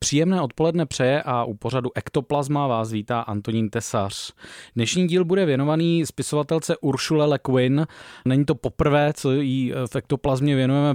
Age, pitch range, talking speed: 20-39, 130-150 Hz, 135 wpm